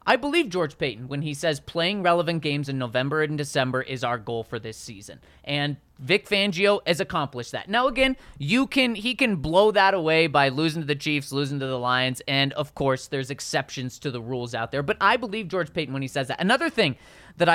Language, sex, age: English, male, 30-49